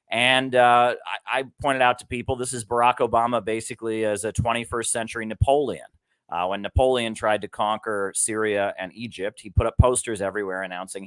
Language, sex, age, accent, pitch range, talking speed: English, male, 30-49, American, 100-120 Hz, 180 wpm